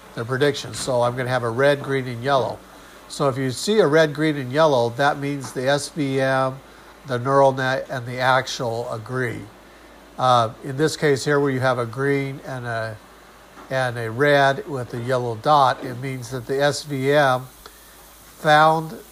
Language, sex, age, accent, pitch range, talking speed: English, male, 50-69, American, 120-140 Hz, 175 wpm